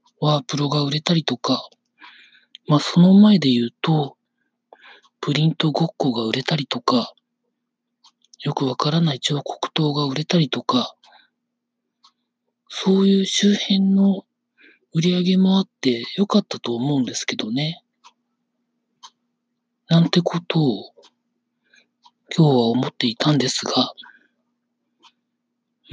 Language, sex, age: Japanese, male, 40-59